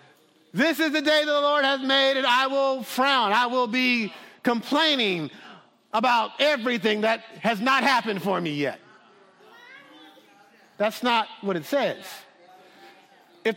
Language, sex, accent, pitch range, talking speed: English, male, American, 230-310 Hz, 135 wpm